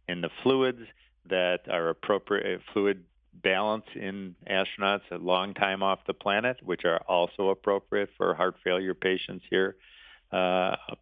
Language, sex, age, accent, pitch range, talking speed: English, male, 50-69, American, 95-110 Hz, 140 wpm